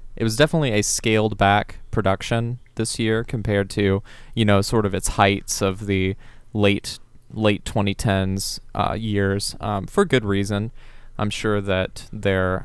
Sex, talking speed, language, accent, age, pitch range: male, 150 wpm, English, American, 20-39, 100-115 Hz